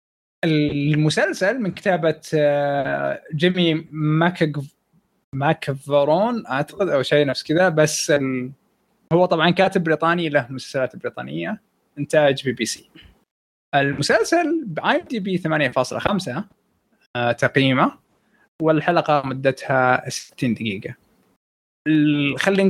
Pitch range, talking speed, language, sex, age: 135-180 Hz, 85 wpm, Arabic, male, 20-39